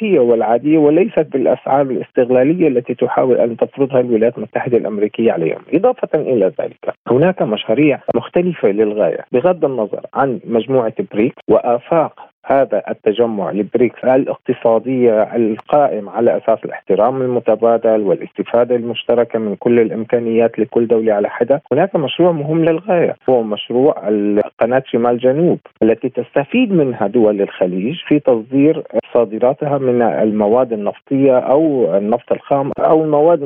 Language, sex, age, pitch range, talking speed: Arabic, male, 40-59, 115-150 Hz, 120 wpm